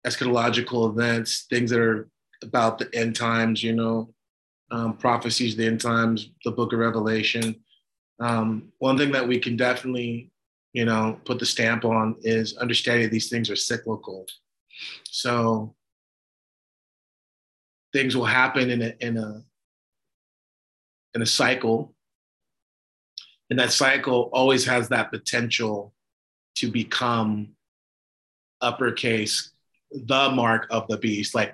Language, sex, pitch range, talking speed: English, male, 110-125 Hz, 125 wpm